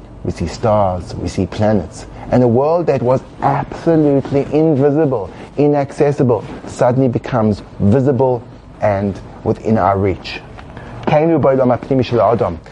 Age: 30-49